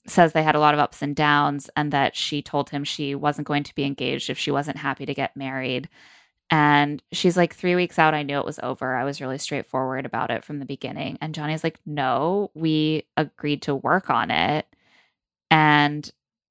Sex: female